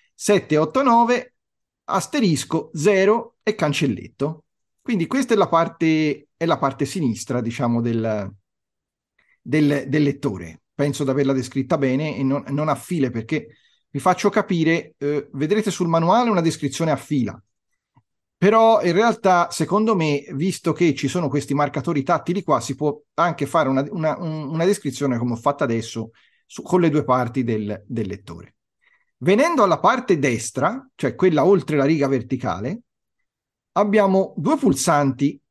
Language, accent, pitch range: Italian, native, 135-185 Hz